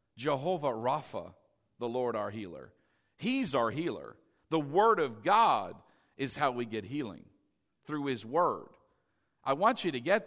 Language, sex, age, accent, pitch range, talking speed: English, male, 50-69, American, 140-190 Hz, 150 wpm